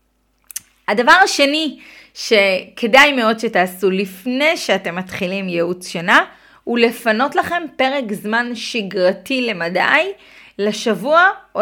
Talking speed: 100 wpm